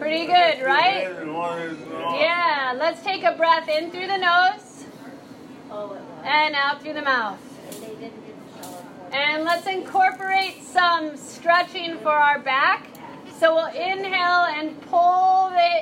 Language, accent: English, American